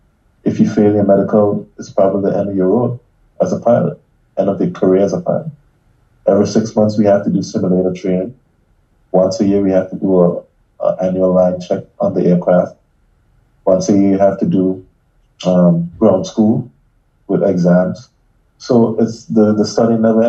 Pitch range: 95-110 Hz